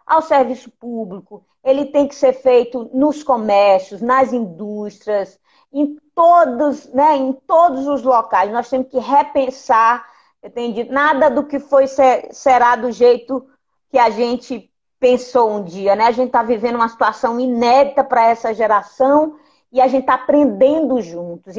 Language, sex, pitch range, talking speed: Portuguese, female, 230-280 Hz, 155 wpm